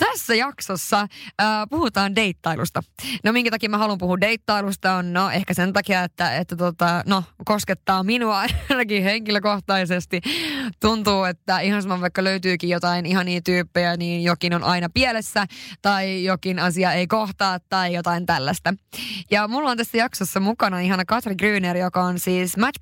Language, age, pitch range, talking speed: Finnish, 20-39, 175-210 Hz, 155 wpm